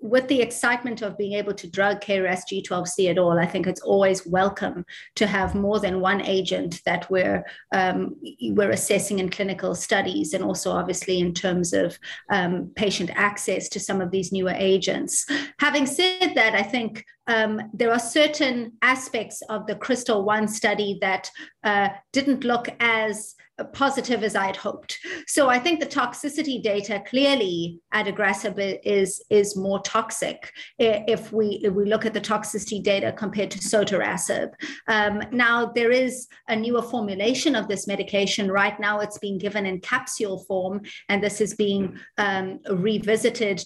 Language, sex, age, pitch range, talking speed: English, female, 30-49, 195-230 Hz, 160 wpm